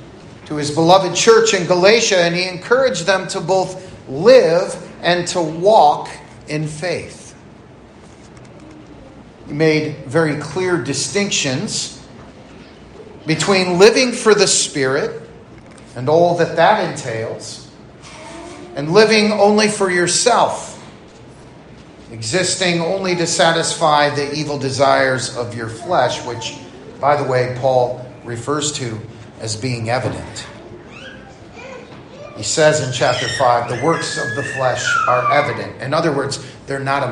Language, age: English, 40-59